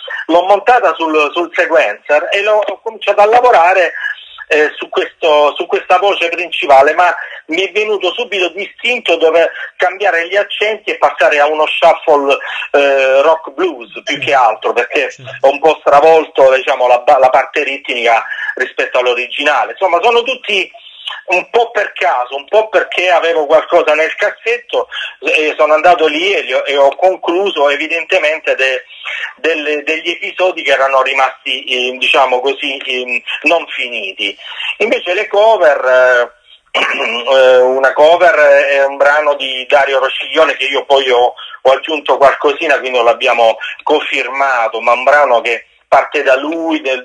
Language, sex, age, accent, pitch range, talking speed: Italian, male, 40-59, native, 135-180 Hz, 150 wpm